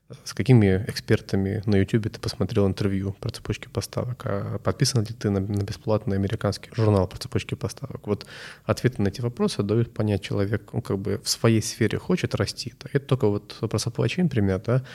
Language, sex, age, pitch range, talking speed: Russian, male, 20-39, 100-125 Hz, 190 wpm